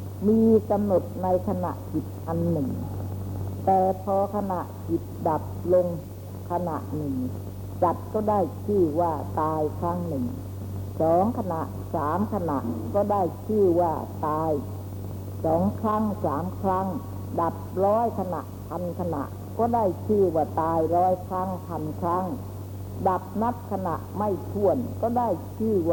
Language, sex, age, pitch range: Thai, female, 60-79, 95-115 Hz